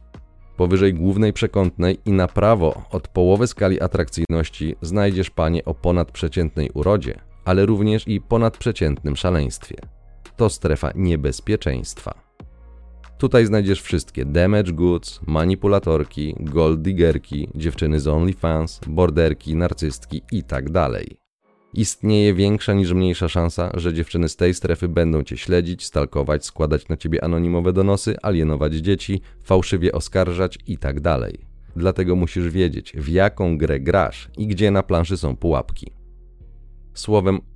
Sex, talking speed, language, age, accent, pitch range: male, 125 wpm, Polish, 30-49, native, 80-100 Hz